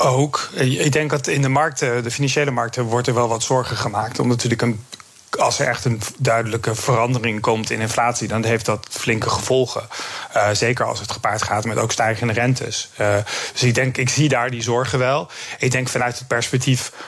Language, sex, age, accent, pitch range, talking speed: Dutch, male, 40-59, Dutch, 115-130 Hz, 205 wpm